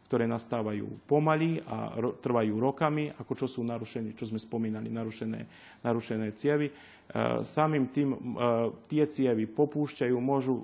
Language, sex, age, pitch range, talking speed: Slovak, male, 40-59, 115-140 Hz, 135 wpm